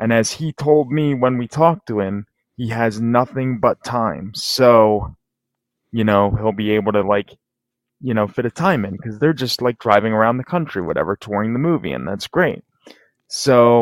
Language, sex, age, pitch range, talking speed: English, male, 20-39, 110-135 Hz, 195 wpm